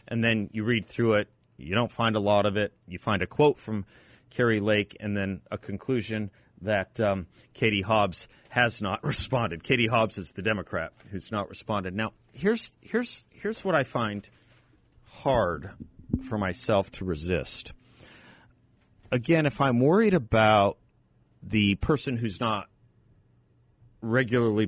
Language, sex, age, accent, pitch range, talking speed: English, male, 40-59, American, 95-120 Hz, 150 wpm